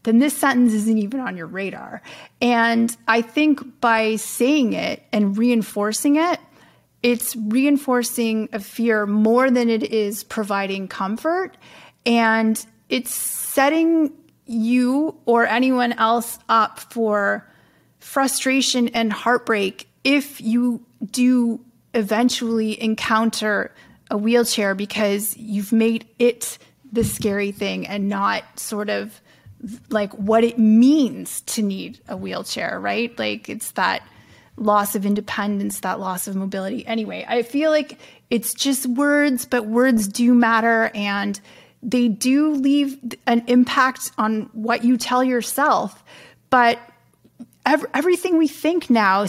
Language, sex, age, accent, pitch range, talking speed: English, female, 30-49, American, 215-250 Hz, 125 wpm